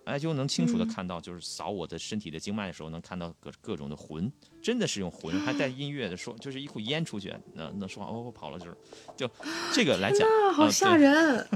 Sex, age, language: male, 30-49, Chinese